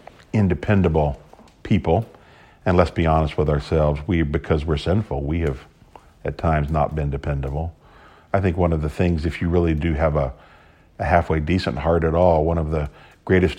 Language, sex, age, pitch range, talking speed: English, male, 50-69, 80-90 Hz, 180 wpm